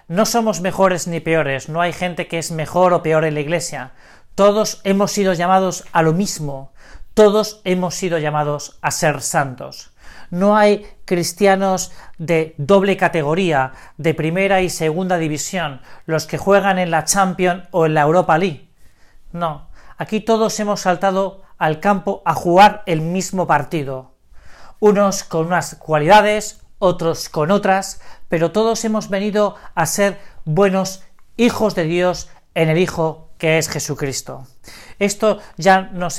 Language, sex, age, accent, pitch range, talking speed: Spanish, male, 40-59, Spanish, 160-195 Hz, 150 wpm